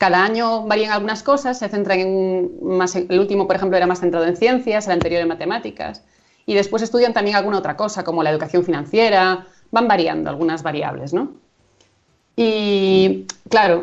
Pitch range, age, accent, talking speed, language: 180-235 Hz, 30-49, Spanish, 175 wpm, Spanish